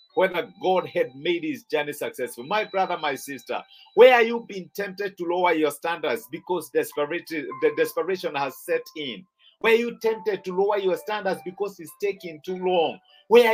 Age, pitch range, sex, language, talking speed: 50-69, 175-225 Hz, male, English, 180 wpm